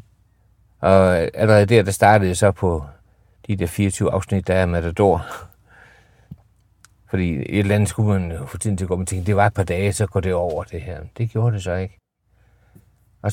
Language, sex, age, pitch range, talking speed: Danish, male, 60-79, 90-105 Hz, 190 wpm